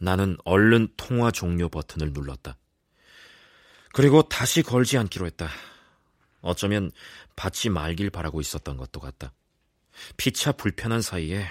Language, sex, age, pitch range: Korean, male, 40-59, 85-120 Hz